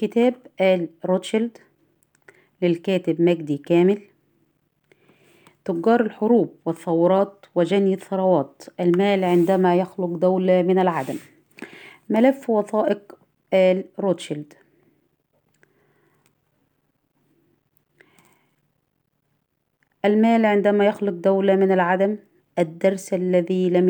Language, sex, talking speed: Arabic, female, 75 wpm